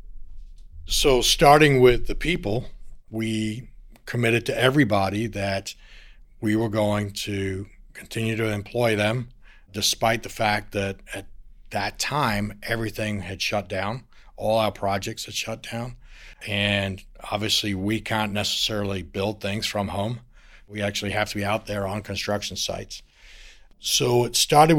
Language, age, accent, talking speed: English, 60-79, American, 140 wpm